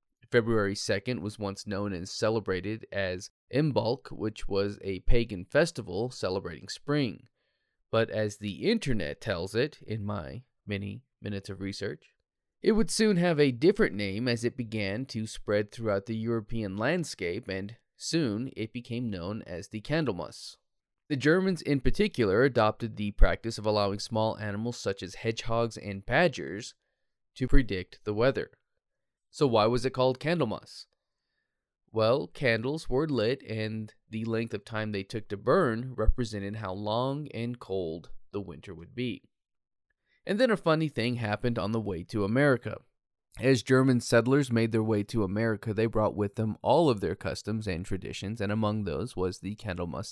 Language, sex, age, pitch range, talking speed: English, male, 20-39, 100-125 Hz, 160 wpm